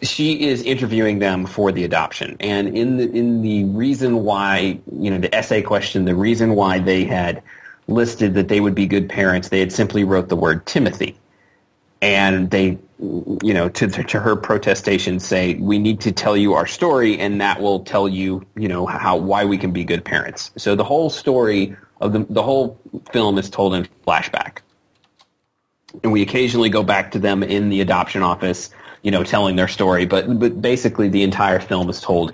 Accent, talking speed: American, 195 wpm